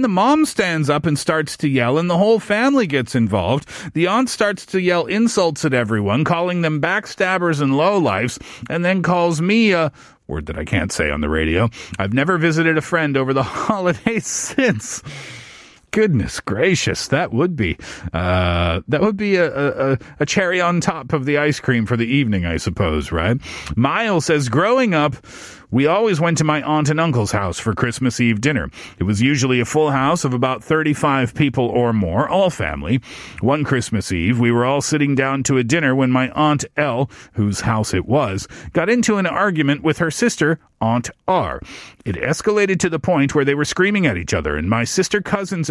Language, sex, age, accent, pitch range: Korean, male, 40-59, American, 120-175 Hz